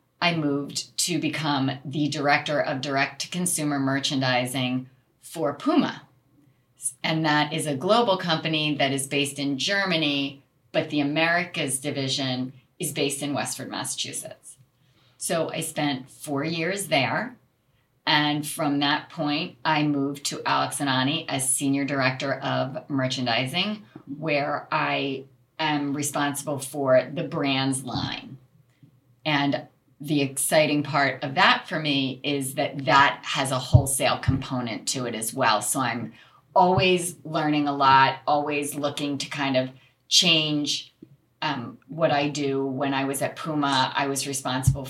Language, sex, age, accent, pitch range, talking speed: English, female, 30-49, American, 130-150 Hz, 135 wpm